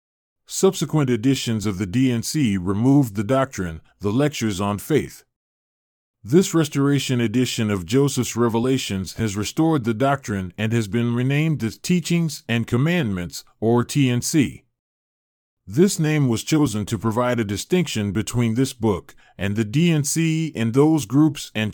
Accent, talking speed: American, 140 wpm